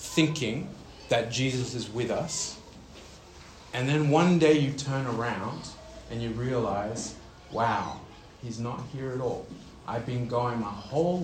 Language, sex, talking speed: English, male, 145 wpm